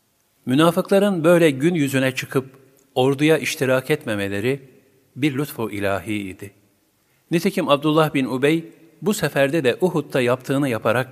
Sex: male